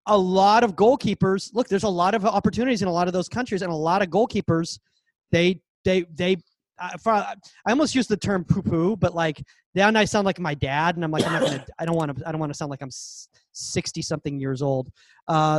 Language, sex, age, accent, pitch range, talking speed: English, male, 30-49, American, 155-195 Hz, 230 wpm